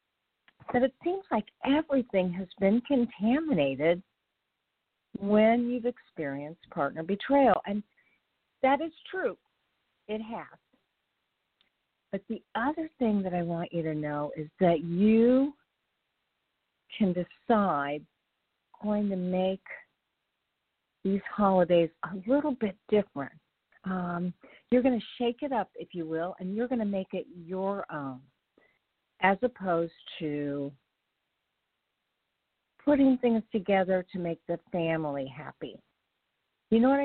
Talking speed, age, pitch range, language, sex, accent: 120 wpm, 50-69, 175-240 Hz, English, female, American